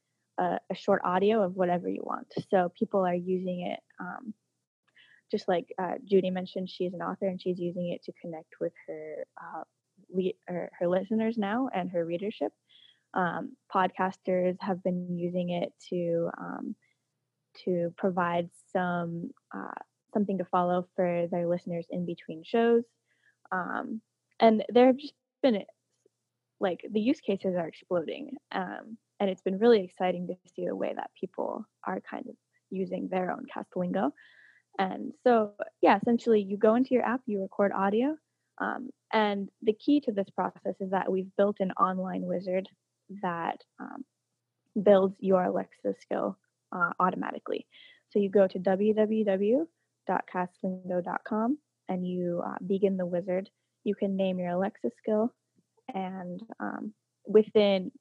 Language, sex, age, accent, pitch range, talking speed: English, female, 10-29, American, 180-225 Hz, 150 wpm